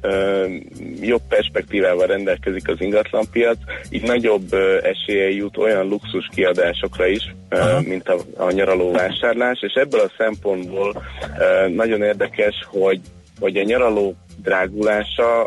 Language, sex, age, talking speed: Hungarian, male, 30-49, 110 wpm